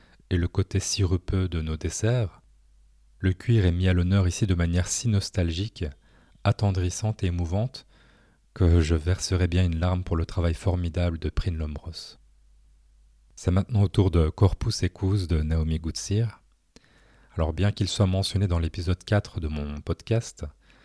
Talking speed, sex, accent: 160 wpm, male, French